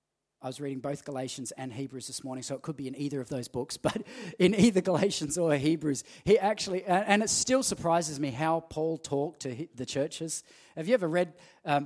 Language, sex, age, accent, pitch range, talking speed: English, male, 30-49, Australian, 150-235 Hz, 215 wpm